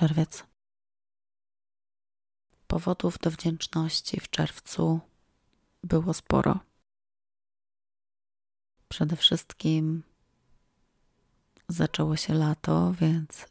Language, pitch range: Polish, 150-165 Hz